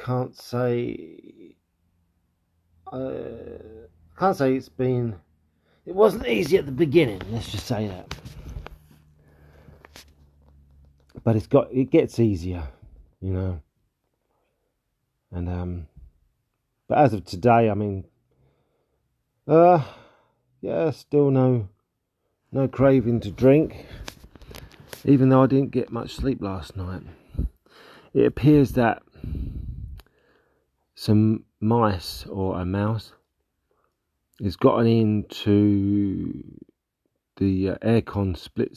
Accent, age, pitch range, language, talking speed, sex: British, 40-59, 90-125 Hz, English, 100 wpm, male